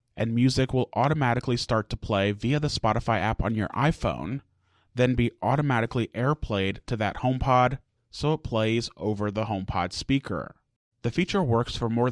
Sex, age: male, 30-49